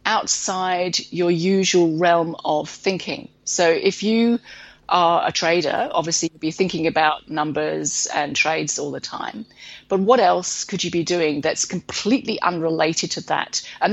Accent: British